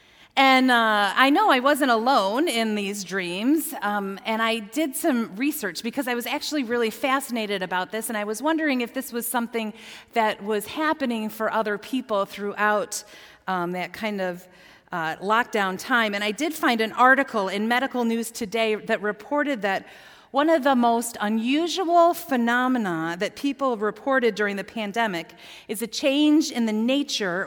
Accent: American